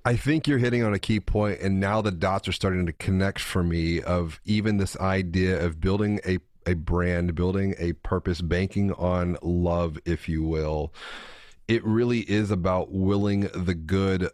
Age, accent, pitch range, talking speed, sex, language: 30-49, American, 90-110 Hz, 180 wpm, male, English